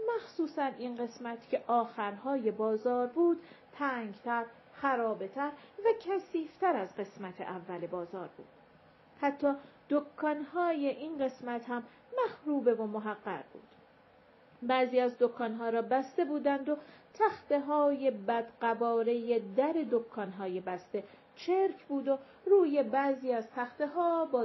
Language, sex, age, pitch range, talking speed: Persian, female, 40-59, 230-300 Hz, 110 wpm